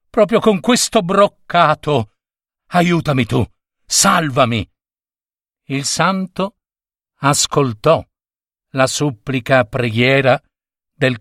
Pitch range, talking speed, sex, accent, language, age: 120-165 Hz, 75 wpm, male, native, Italian, 50-69